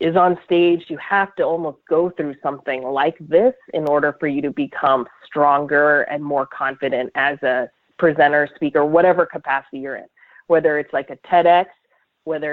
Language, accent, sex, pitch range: English, American, female, 145-165 Hz